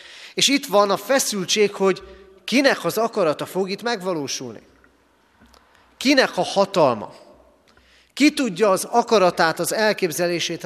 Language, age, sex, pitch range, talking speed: Hungarian, 30-49, male, 155-215 Hz, 120 wpm